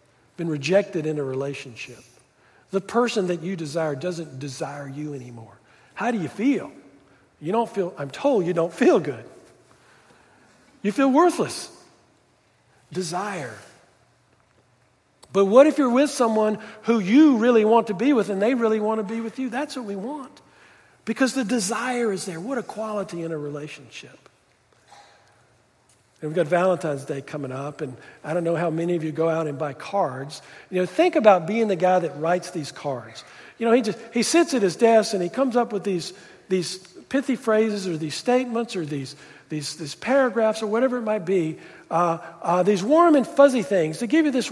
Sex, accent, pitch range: male, American, 155-235 Hz